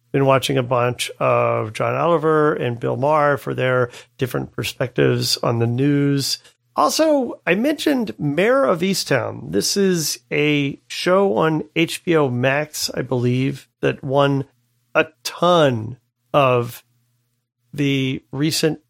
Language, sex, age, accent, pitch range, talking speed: English, male, 40-59, American, 120-155 Hz, 125 wpm